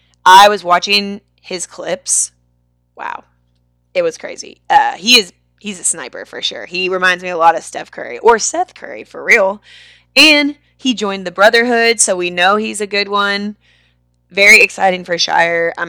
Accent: American